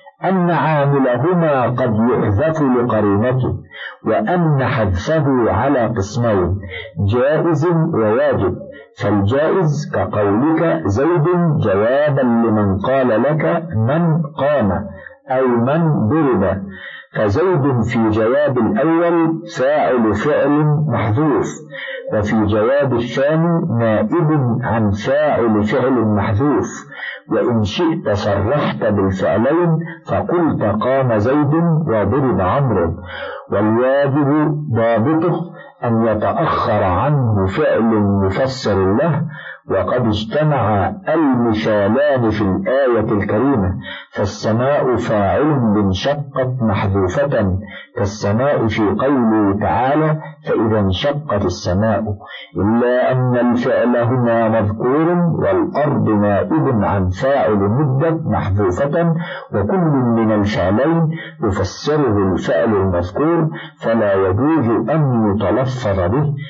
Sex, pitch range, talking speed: male, 105-150 Hz, 85 wpm